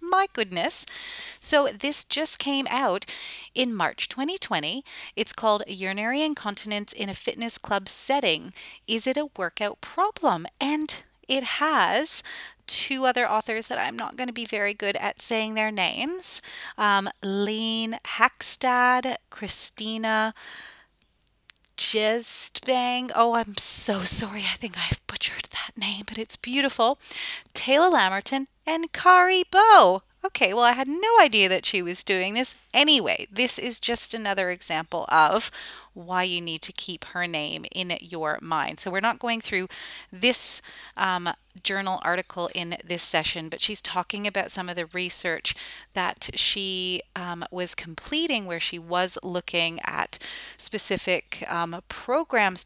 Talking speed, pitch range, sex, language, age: 140 wpm, 180-250 Hz, female, English, 30-49